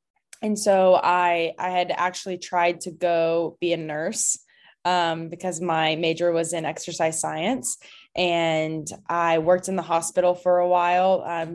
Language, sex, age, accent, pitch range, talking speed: English, female, 20-39, American, 165-180 Hz, 155 wpm